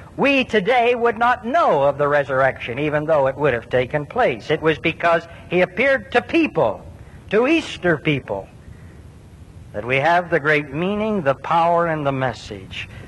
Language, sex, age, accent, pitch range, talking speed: English, male, 60-79, American, 110-180 Hz, 165 wpm